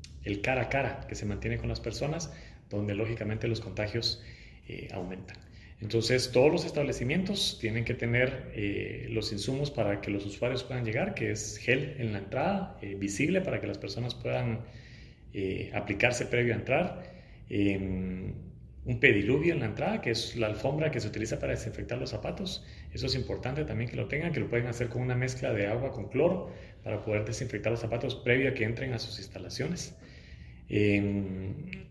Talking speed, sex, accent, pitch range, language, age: 185 wpm, male, Mexican, 100-130 Hz, Spanish, 30-49